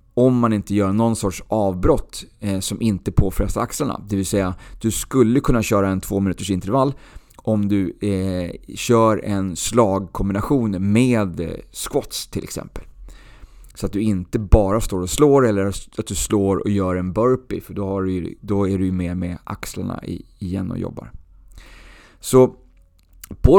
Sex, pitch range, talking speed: male, 95-115 Hz, 160 wpm